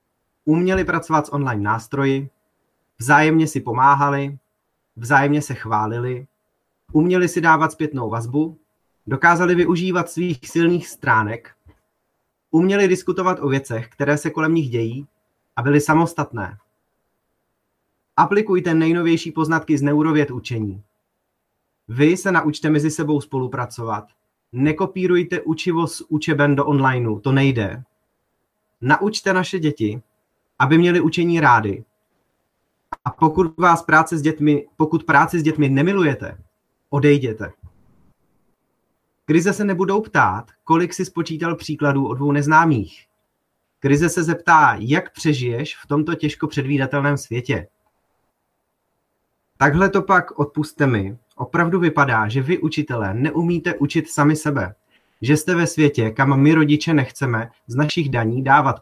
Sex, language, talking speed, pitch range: male, Czech, 120 wpm, 130-165 Hz